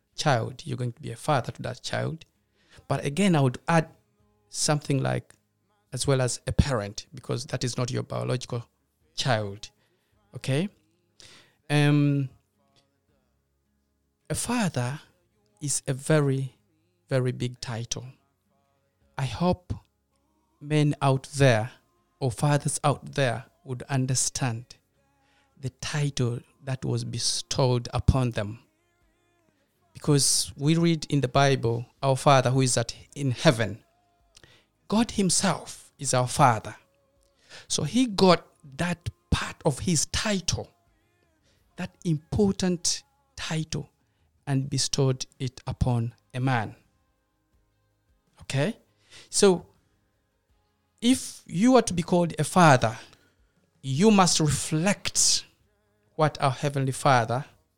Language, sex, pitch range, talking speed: English, male, 105-145 Hz, 110 wpm